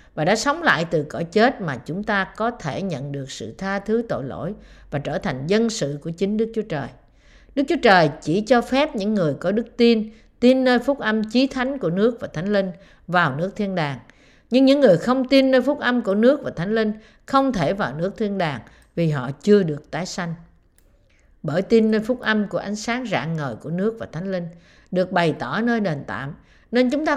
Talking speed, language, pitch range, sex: 230 wpm, Vietnamese, 165-240 Hz, female